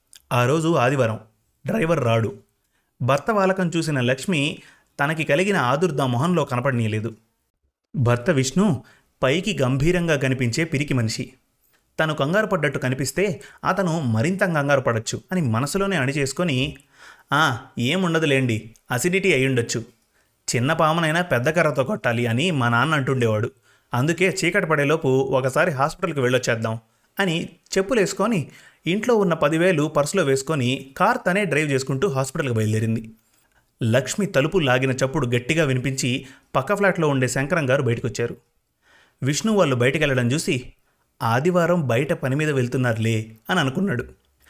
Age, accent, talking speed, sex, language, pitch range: 30-49, native, 115 wpm, male, Telugu, 125-175 Hz